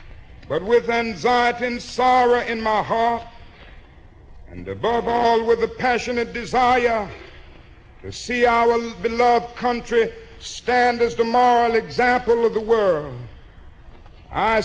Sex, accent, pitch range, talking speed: male, American, 220-245 Hz, 120 wpm